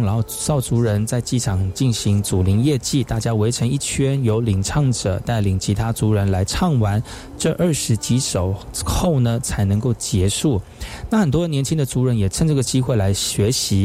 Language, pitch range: Chinese, 105-135 Hz